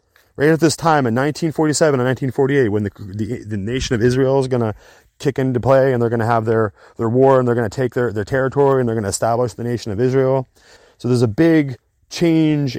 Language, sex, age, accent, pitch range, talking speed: English, male, 30-49, American, 120-140 Hz, 240 wpm